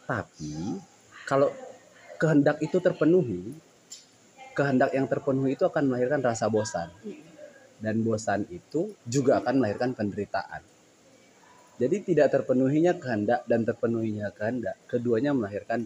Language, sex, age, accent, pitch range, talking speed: Indonesian, male, 30-49, native, 105-130 Hz, 110 wpm